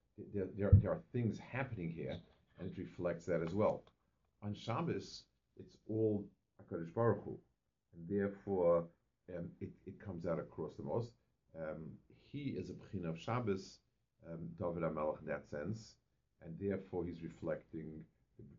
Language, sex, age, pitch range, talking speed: English, male, 50-69, 80-110 Hz, 150 wpm